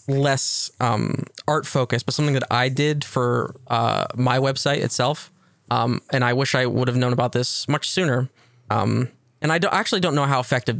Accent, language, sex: American, English, male